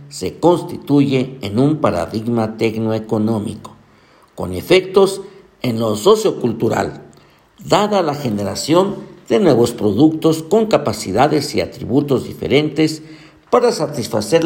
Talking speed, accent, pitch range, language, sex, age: 100 wpm, Mexican, 110-155 Hz, Spanish, male, 50-69